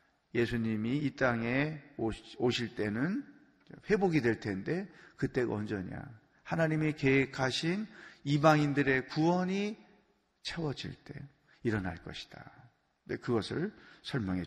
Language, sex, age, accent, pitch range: Korean, male, 40-59, native, 120-155 Hz